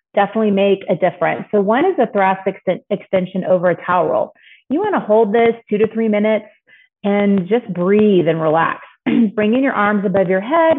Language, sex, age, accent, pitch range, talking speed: English, female, 30-49, American, 180-220 Hz, 190 wpm